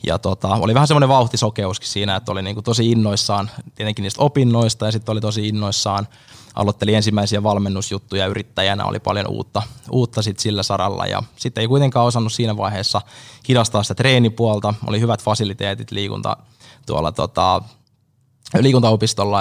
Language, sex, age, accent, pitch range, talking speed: Finnish, male, 20-39, native, 100-120 Hz, 150 wpm